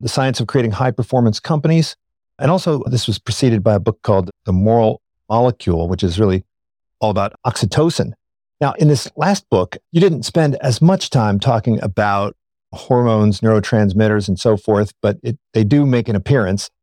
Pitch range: 105-140 Hz